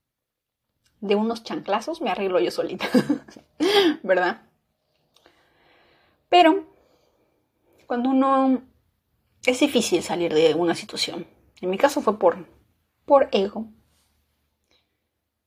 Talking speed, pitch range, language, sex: 95 wpm, 190-245 Hz, Spanish, female